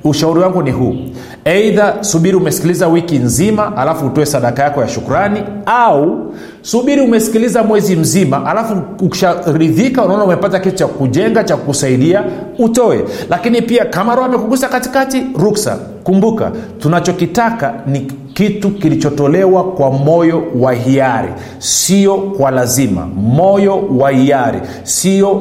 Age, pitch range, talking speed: 40-59, 135-195 Hz, 120 wpm